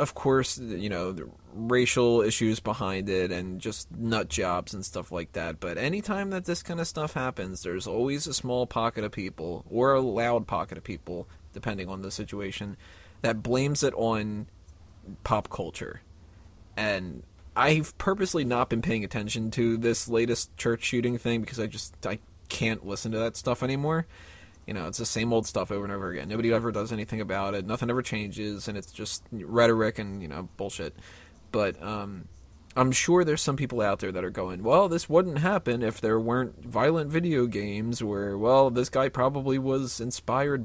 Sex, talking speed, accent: male, 190 wpm, American